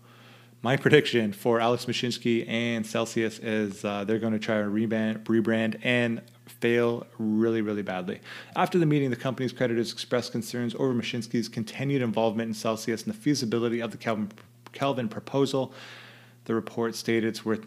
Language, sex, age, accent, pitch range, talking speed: English, male, 30-49, American, 110-125 Hz, 160 wpm